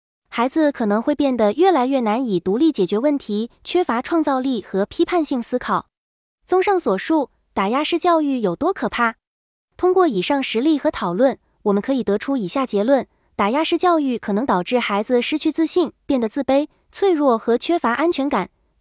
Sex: female